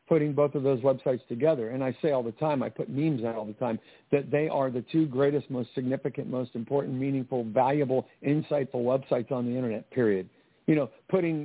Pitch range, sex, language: 120-140 Hz, male, English